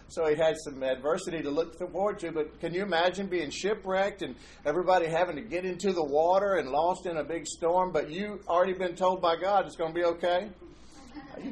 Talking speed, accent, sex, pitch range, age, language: 220 wpm, American, male, 125-180 Hz, 50-69, English